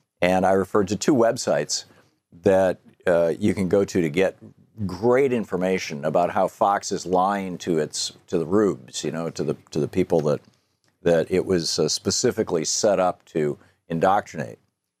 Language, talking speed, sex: English, 170 wpm, male